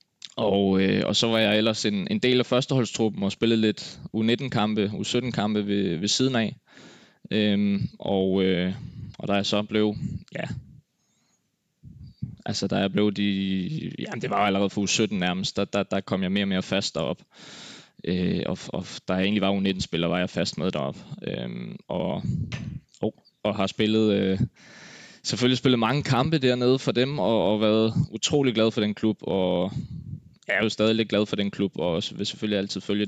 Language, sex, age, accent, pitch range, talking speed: Danish, male, 20-39, native, 95-115 Hz, 190 wpm